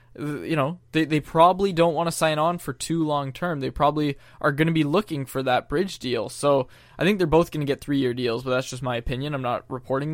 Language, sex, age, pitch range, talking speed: English, male, 20-39, 130-160 Hz, 260 wpm